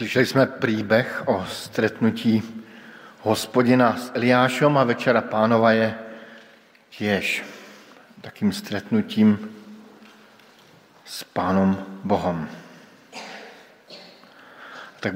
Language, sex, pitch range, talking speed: Slovak, male, 105-125 Hz, 75 wpm